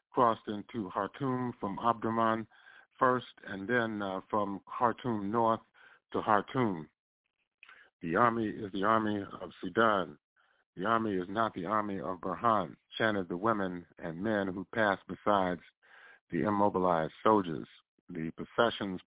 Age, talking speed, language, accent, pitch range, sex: 50-69, 130 wpm, English, American, 95-115 Hz, male